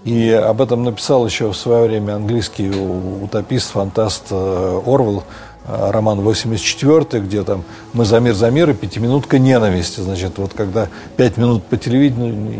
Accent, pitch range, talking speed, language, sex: native, 105-135 Hz, 150 wpm, Russian, male